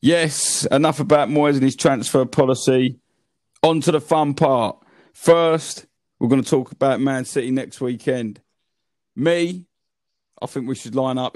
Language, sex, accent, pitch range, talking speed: English, male, British, 115-135 Hz, 160 wpm